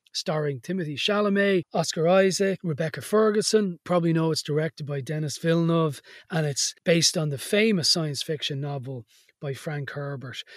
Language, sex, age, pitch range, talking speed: English, male, 30-49, 140-195 Hz, 150 wpm